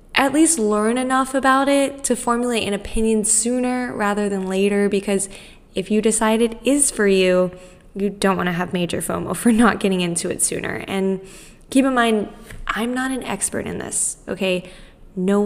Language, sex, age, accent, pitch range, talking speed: English, female, 10-29, American, 185-230 Hz, 185 wpm